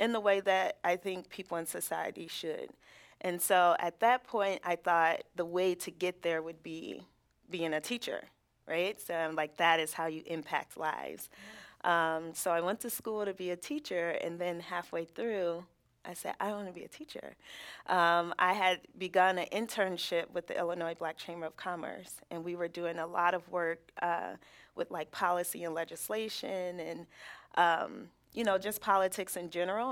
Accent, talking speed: American, 190 wpm